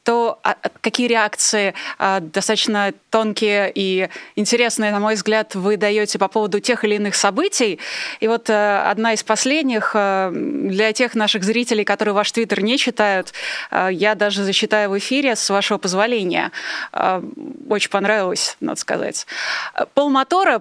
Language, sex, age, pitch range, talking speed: Russian, female, 20-39, 200-235 Hz, 155 wpm